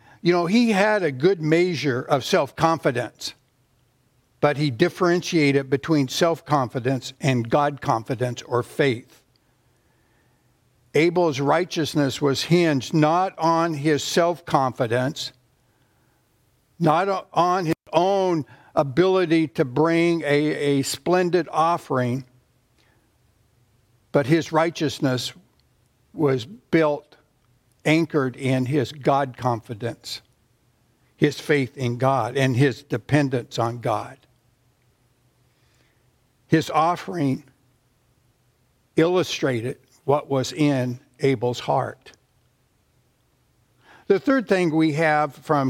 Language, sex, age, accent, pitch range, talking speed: English, male, 60-79, American, 125-165 Hz, 90 wpm